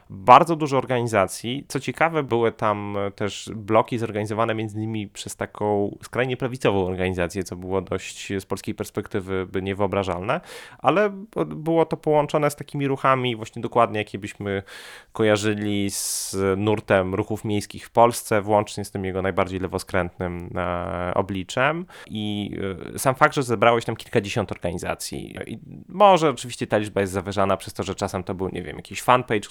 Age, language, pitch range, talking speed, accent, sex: 30-49, Polish, 100-120 Hz, 155 wpm, native, male